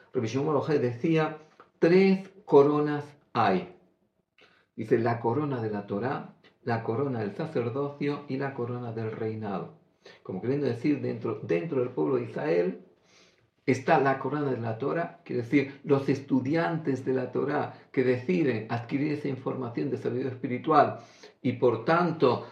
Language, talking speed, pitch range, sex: Greek, 145 wpm, 125-155 Hz, male